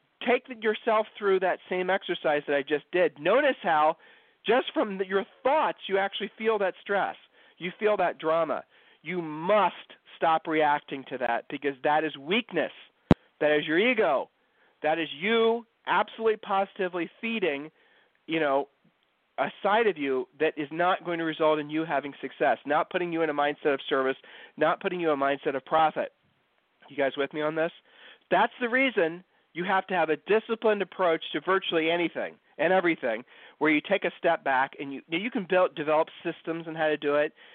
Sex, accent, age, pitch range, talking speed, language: male, American, 40-59, 145-195 Hz, 185 wpm, English